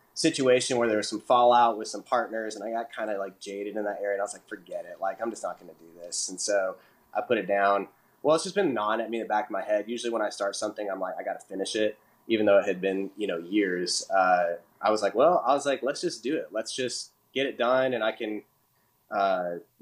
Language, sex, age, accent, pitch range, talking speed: English, male, 20-39, American, 95-115 Hz, 280 wpm